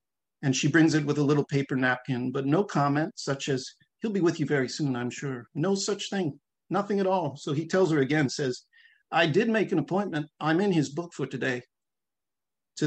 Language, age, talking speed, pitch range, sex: English, 50-69, 215 wpm, 130-160 Hz, male